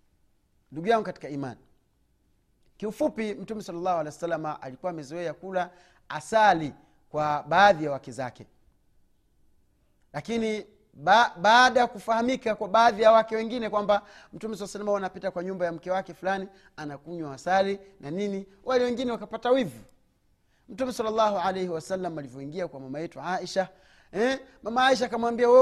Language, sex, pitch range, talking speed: Swahili, male, 145-225 Hz, 135 wpm